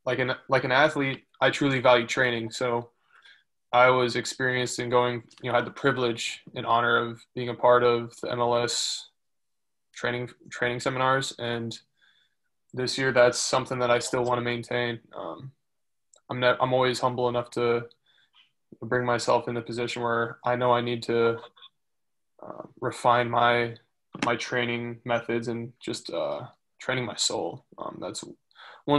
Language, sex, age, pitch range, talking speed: English, male, 20-39, 120-125 Hz, 160 wpm